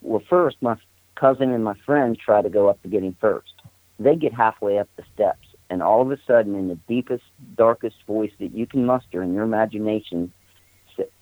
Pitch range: 95-120 Hz